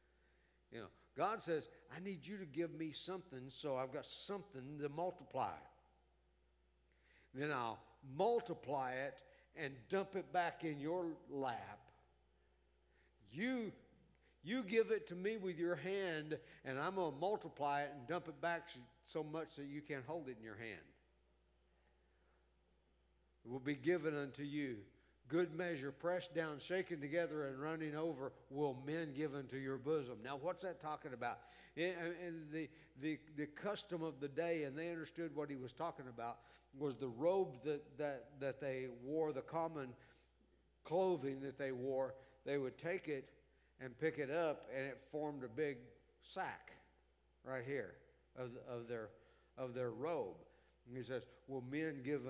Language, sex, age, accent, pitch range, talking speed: English, male, 60-79, American, 120-165 Hz, 165 wpm